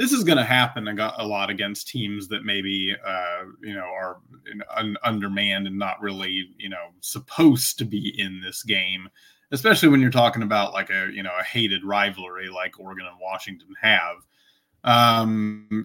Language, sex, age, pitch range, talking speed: English, male, 20-39, 100-120 Hz, 180 wpm